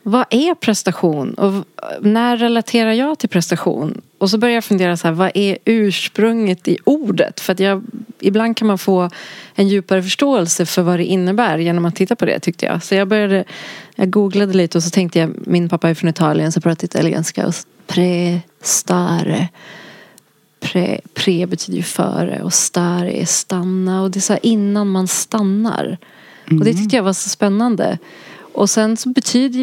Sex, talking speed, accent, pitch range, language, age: female, 180 wpm, Swedish, 175-215 Hz, English, 30-49